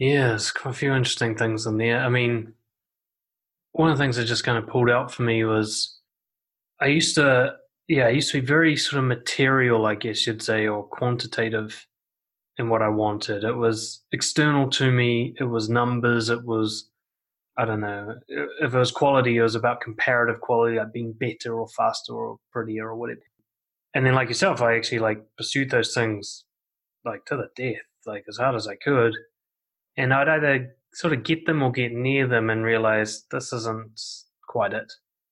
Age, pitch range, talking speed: 20-39, 110-130 Hz, 195 wpm